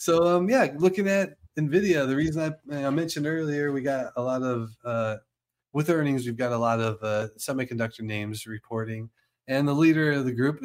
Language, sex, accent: English, male, American